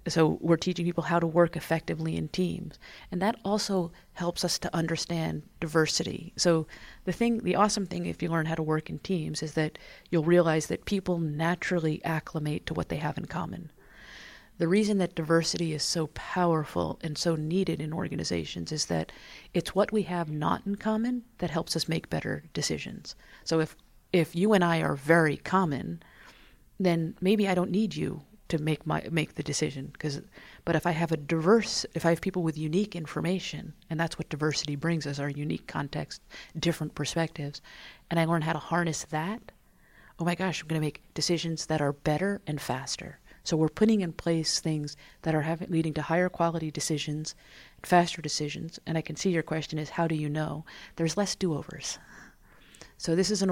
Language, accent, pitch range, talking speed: English, American, 155-180 Hz, 195 wpm